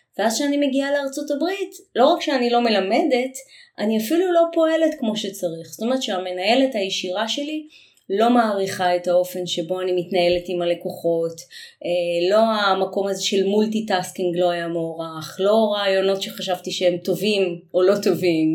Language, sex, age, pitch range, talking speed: Hebrew, female, 20-39, 175-235 Hz, 150 wpm